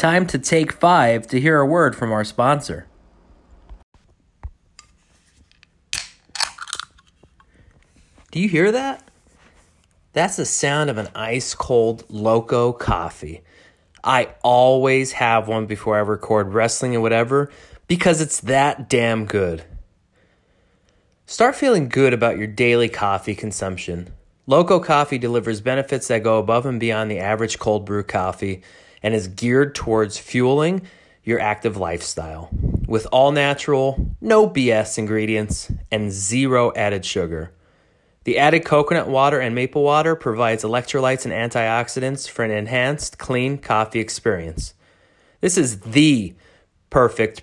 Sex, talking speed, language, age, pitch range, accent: male, 125 wpm, English, 30-49, 100-135 Hz, American